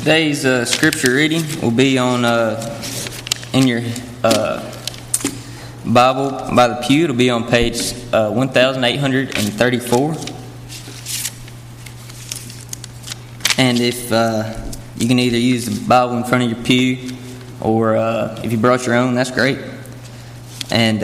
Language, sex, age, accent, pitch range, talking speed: English, male, 20-39, American, 115-125 Hz, 145 wpm